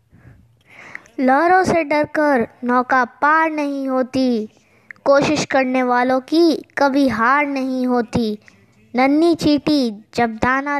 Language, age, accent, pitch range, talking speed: Hindi, 20-39, native, 230-280 Hz, 105 wpm